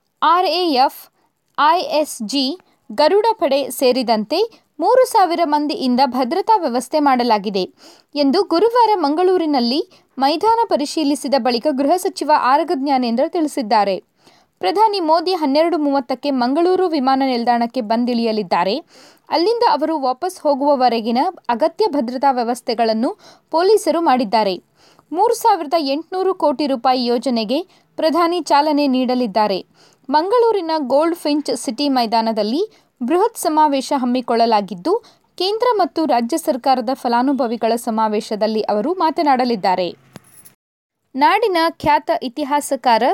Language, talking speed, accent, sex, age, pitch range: Kannada, 90 wpm, native, female, 20-39, 250-335 Hz